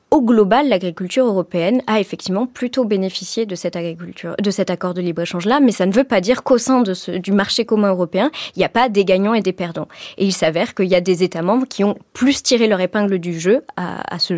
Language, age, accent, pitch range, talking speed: French, 20-39, French, 185-245 Hz, 245 wpm